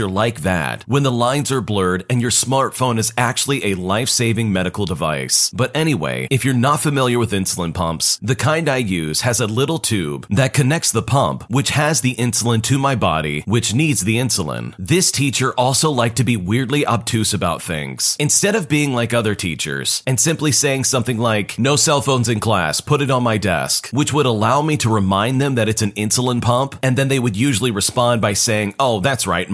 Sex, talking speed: male, 205 wpm